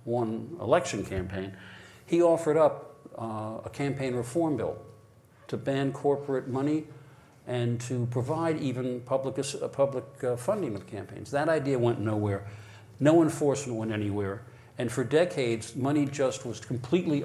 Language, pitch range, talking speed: English, 115-140 Hz, 145 wpm